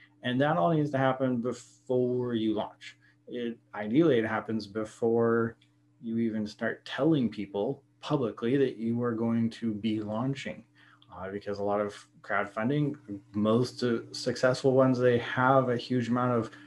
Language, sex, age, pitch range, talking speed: English, male, 20-39, 100-125 Hz, 150 wpm